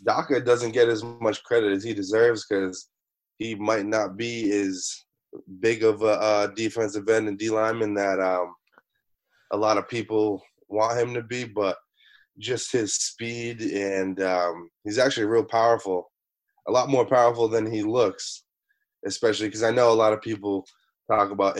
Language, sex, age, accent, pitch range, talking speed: English, male, 20-39, American, 95-115 Hz, 165 wpm